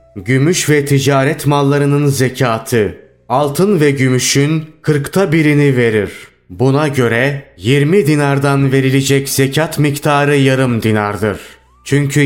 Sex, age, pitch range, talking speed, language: male, 30-49, 130-150 Hz, 105 wpm, Turkish